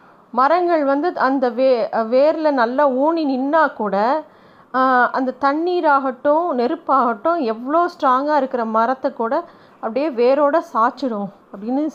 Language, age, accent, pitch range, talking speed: Tamil, 30-49, native, 225-285 Hz, 105 wpm